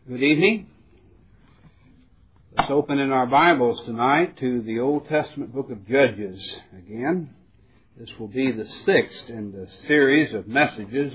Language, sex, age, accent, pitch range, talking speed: English, male, 60-79, American, 100-150 Hz, 140 wpm